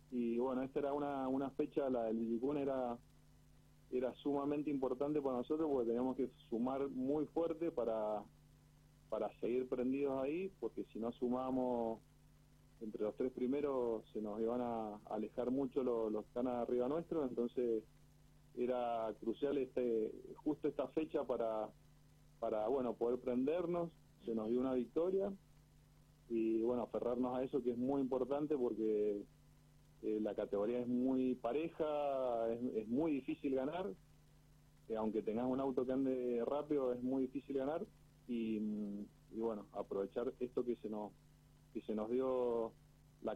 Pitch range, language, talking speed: 115-145 Hz, Spanish, 150 wpm